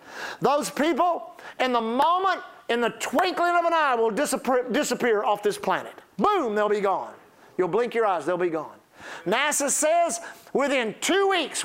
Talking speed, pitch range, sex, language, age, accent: 170 wpm, 215-305 Hz, male, English, 50-69, American